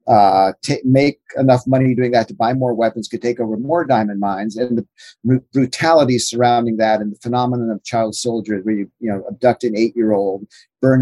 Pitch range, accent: 105-125 Hz, American